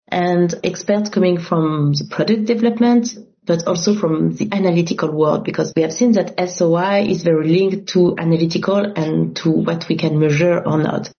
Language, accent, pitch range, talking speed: English, French, 175-215 Hz, 170 wpm